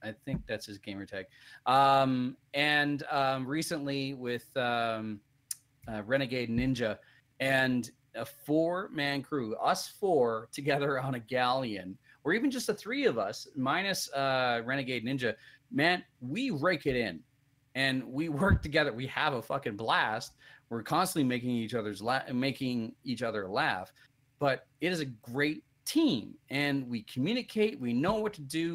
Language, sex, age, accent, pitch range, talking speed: English, male, 30-49, American, 120-145 Hz, 150 wpm